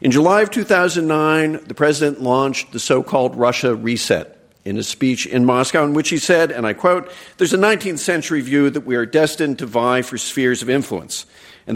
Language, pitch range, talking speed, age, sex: English, 120-155 Hz, 200 wpm, 50-69, male